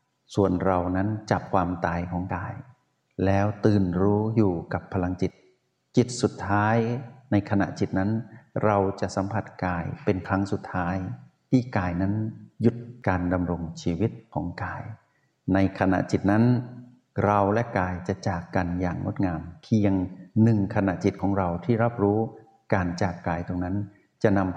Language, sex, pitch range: Thai, male, 90-110 Hz